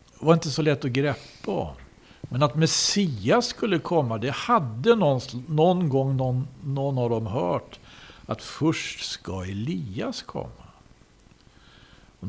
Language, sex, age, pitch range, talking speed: Swedish, male, 60-79, 95-150 Hz, 135 wpm